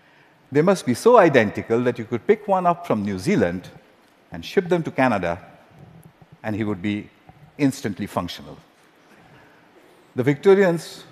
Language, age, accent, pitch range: Korean, 50-69, Indian, 105-155 Hz